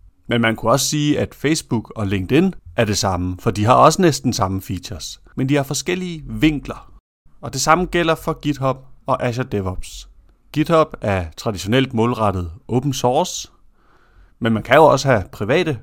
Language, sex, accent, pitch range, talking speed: Danish, male, native, 100-140 Hz, 175 wpm